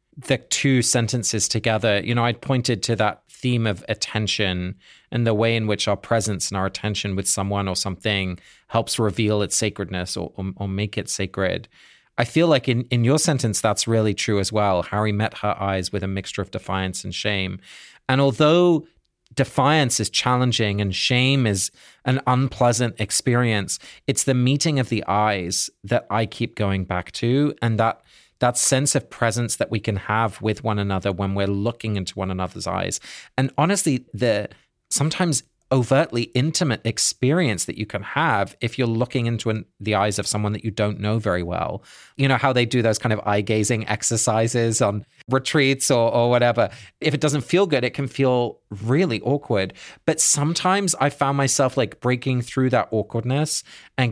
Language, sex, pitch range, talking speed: English, male, 105-135 Hz, 185 wpm